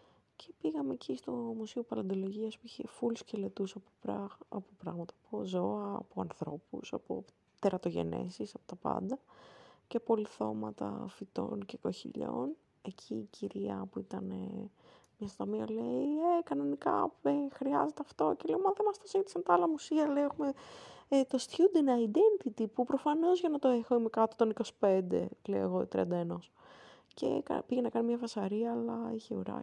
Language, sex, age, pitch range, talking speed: Greek, female, 20-39, 195-250 Hz, 160 wpm